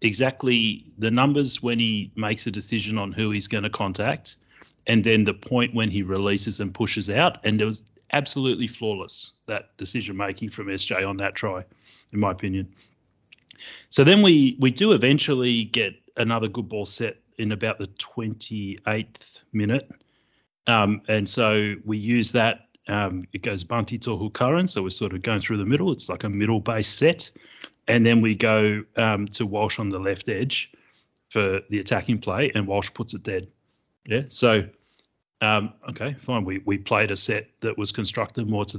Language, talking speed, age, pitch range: English, 180 wpm, 30-49, 100-120 Hz